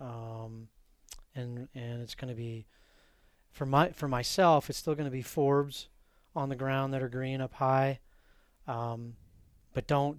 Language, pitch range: English, 125-140 Hz